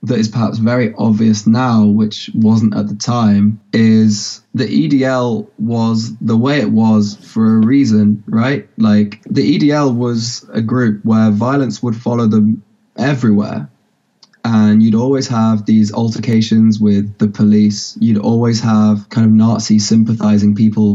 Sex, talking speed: male, 150 wpm